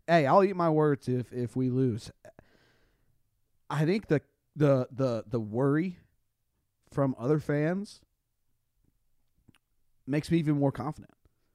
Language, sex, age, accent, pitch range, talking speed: English, male, 30-49, American, 115-145 Hz, 125 wpm